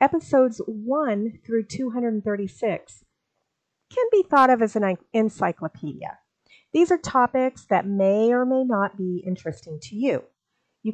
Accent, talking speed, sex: American, 130 wpm, female